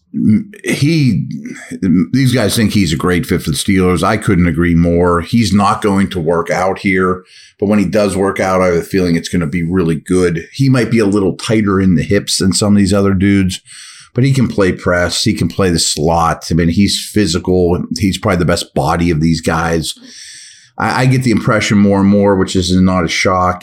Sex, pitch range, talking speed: male, 90-105 Hz, 220 wpm